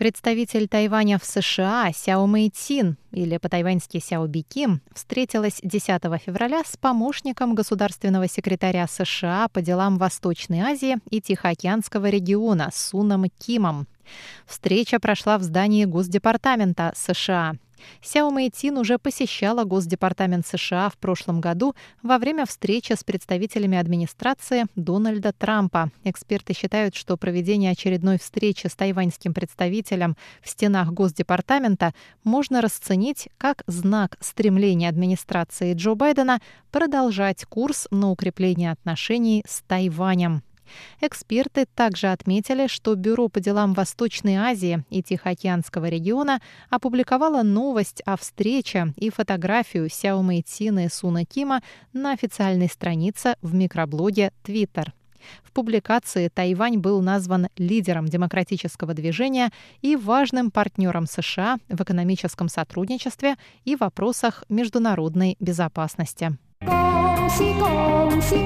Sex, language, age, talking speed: female, Russian, 20-39, 105 wpm